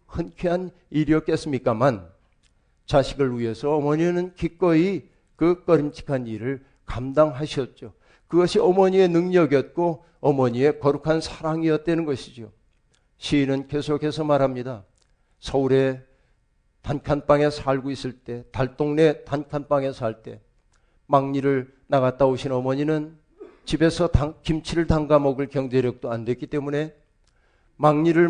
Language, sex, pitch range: Korean, male, 130-160 Hz